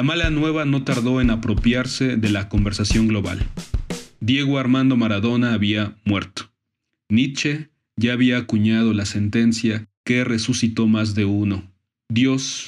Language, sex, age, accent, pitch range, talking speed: Spanish, male, 30-49, Mexican, 105-130 Hz, 135 wpm